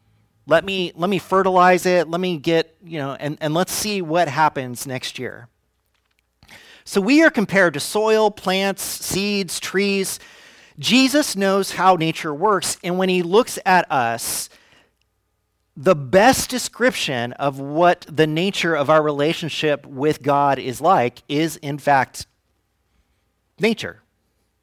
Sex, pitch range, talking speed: male, 125-195 Hz, 140 wpm